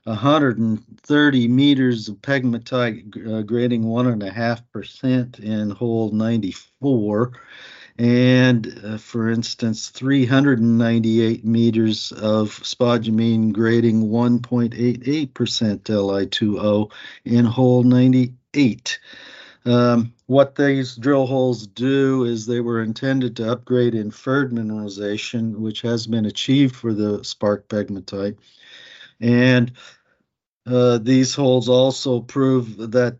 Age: 50-69